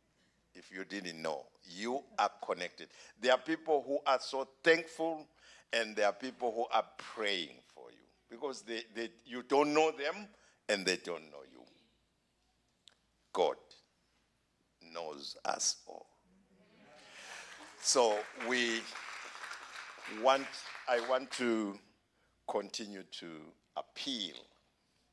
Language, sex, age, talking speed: English, male, 60-79, 115 wpm